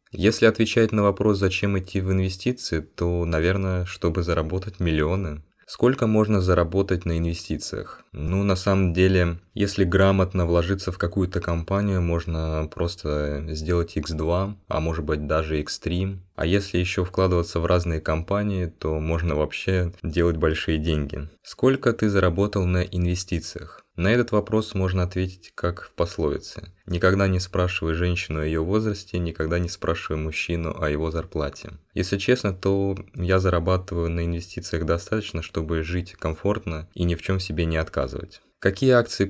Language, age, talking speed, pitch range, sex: Russian, 20-39, 150 wpm, 85-100 Hz, male